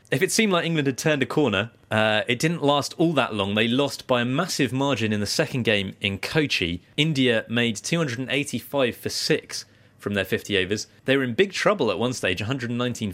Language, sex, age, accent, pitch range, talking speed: English, male, 30-49, British, 100-130 Hz, 210 wpm